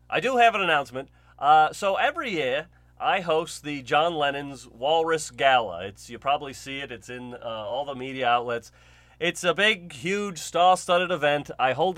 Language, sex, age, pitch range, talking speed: English, male, 30-49, 130-175 Hz, 180 wpm